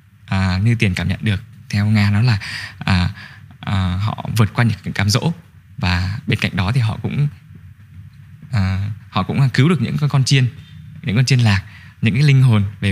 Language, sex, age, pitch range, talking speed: Vietnamese, male, 20-39, 100-130 Hz, 195 wpm